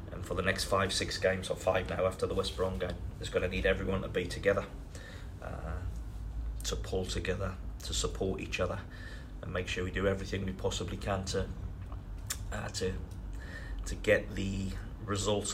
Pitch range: 95-100 Hz